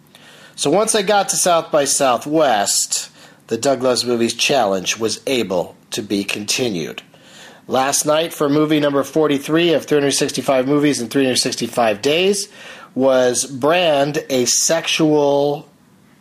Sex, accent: male, American